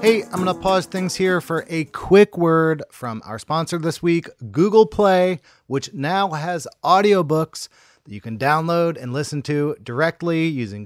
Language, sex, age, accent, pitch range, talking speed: English, male, 30-49, American, 125-160 Hz, 170 wpm